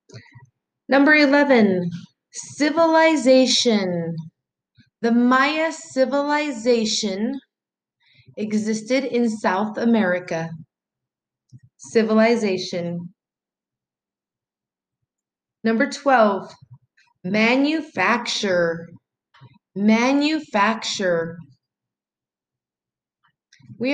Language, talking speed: English, 40 wpm